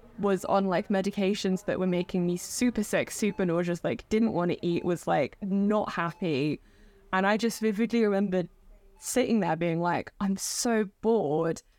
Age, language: 20-39, English